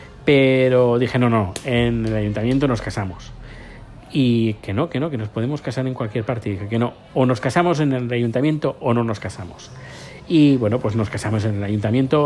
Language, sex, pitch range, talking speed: Spanish, male, 110-135 Hz, 205 wpm